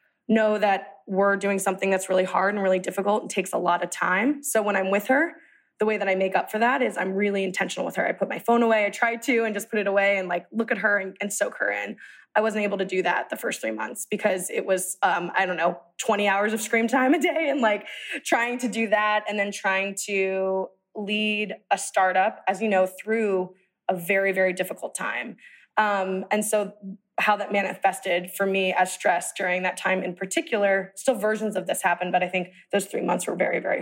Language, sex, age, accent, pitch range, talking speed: English, female, 20-39, American, 190-215 Hz, 240 wpm